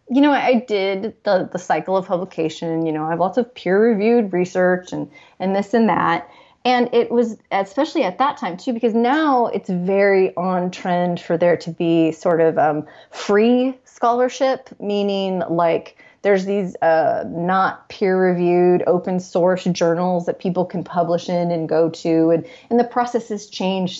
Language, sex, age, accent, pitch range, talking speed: English, female, 30-49, American, 170-230 Hz, 175 wpm